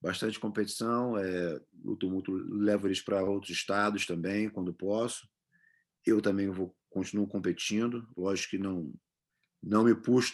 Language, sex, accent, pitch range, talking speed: English, male, Brazilian, 95-110 Hz, 140 wpm